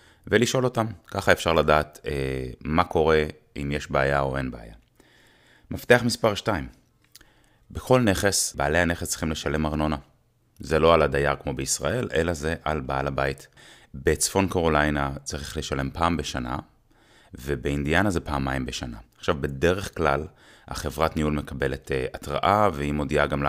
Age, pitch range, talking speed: 30-49, 70-90 Hz, 145 wpm